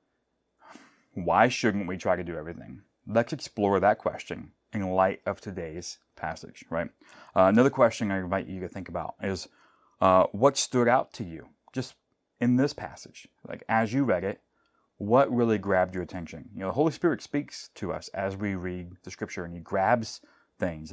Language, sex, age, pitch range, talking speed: English, male, 30-49, 95-115 Hz, 185 wpm